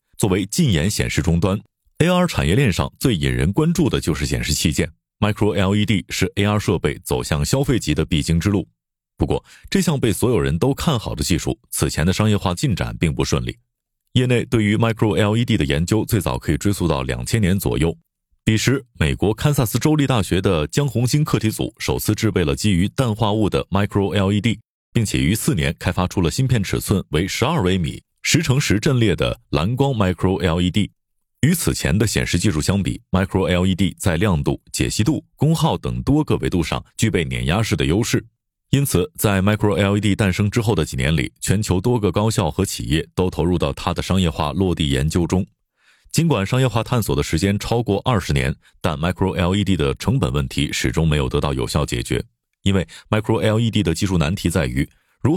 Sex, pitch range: male, 85-115 Hz